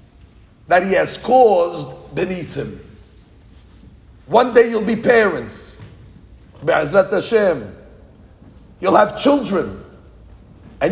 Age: 50-69